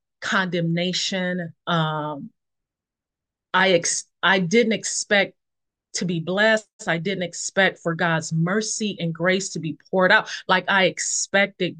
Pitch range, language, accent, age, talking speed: 165-205 Hz, English, American, 30-49, 125 wpm